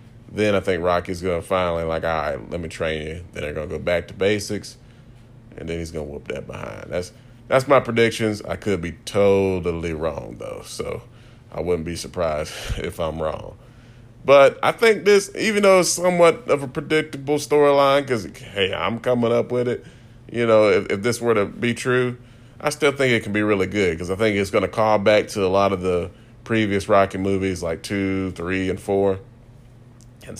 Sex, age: male, 30-49